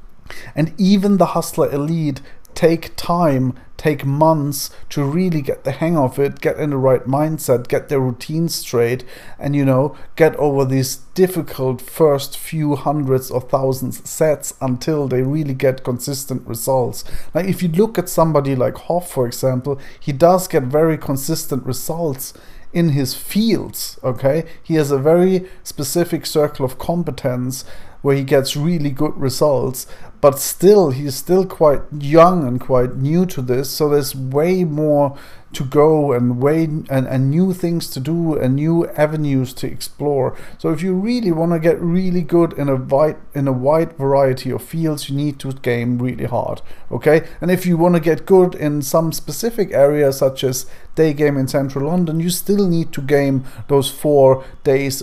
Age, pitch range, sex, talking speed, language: 40-59, 130-165 Hz, male, 175 wpm, English